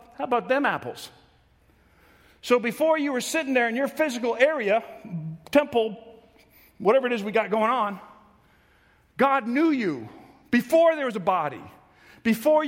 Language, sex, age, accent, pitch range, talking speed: English, male, 50-69, American, 220-295 Hz, 145 wpm